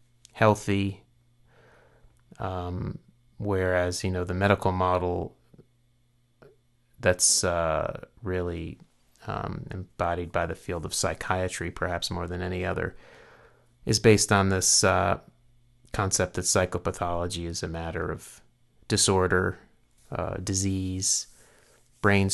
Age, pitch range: 30-49, 90-110 Hz